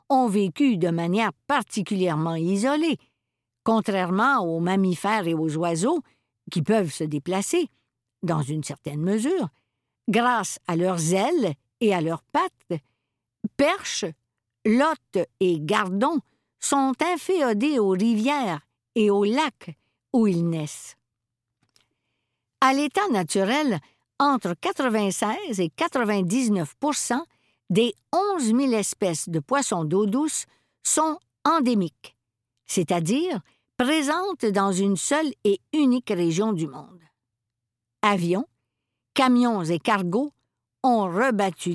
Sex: female